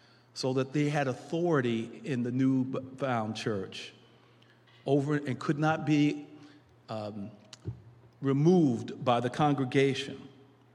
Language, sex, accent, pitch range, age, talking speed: English, male, American, 120-155 Hz, 50-69, 110 wpm